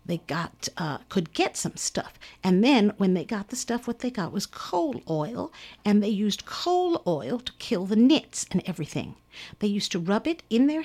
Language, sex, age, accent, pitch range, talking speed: English, female, 50-69, American, 190-275 Hz, 210 wpm